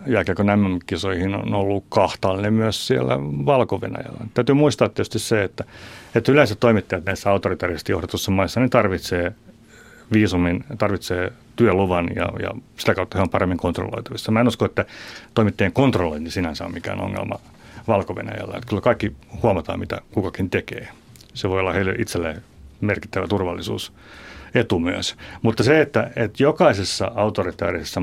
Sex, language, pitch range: male, Finnish, 90-115 Hz